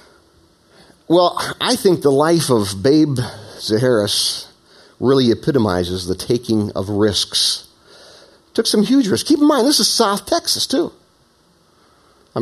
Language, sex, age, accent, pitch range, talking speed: English, male, 50-69, American, 145-225 Hz, 130 wpm